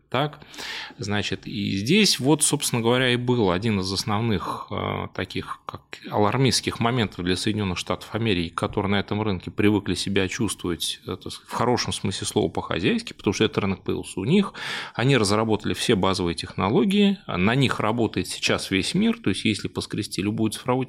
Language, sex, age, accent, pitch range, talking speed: Russian, male, 20-39, native, 100-140 Hz, 165 wpm